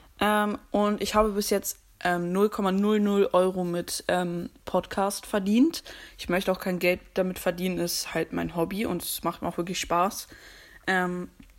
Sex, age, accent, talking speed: female, 20-39, German, 165 wpm